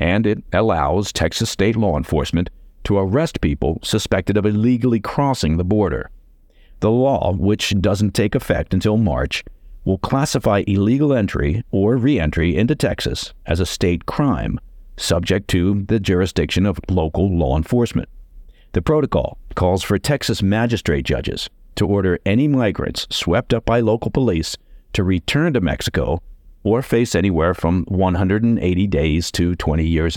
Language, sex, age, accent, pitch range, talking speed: English, male, 50-69, American, 85-115 Hz, 145 wpm